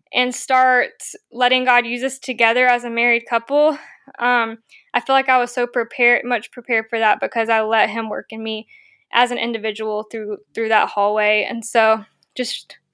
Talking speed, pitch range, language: 185 wpm, 235-260 Hz, English